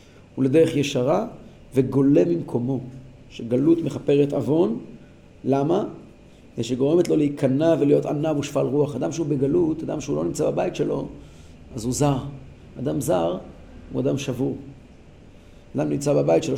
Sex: male